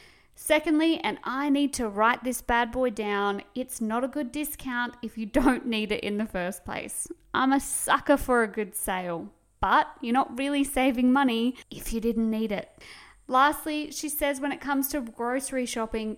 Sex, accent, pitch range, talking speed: female, Australian, 215-275 Hz, 190 wpm